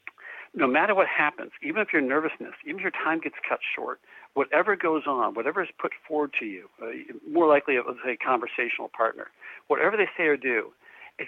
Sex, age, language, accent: male, 60-79, English, American